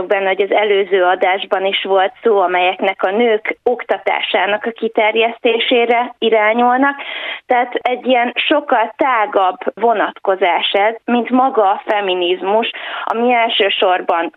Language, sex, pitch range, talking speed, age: Hungarian, female, 195-235 Hz, 115 wpm, 20-39